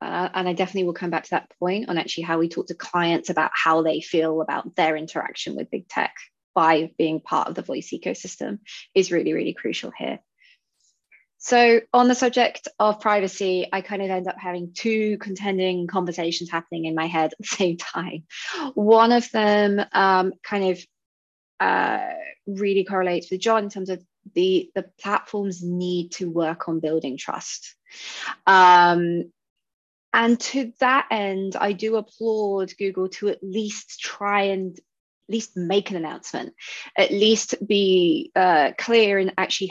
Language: English